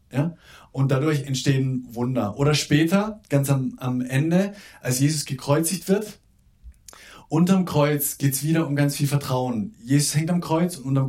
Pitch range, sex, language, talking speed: 120-155 Hz, male, German, 160 wpm